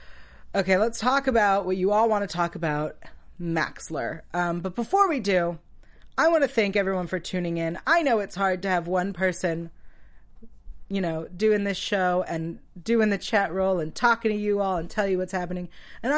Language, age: English, 30-49